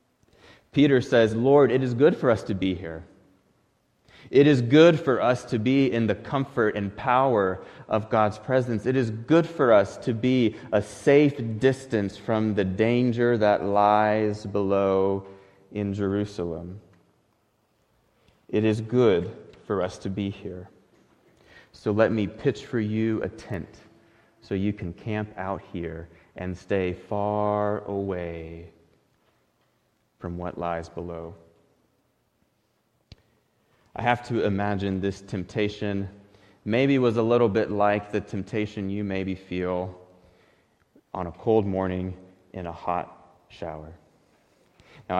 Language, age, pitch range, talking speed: English, 30-49, 90-110 Hz, 135 wpm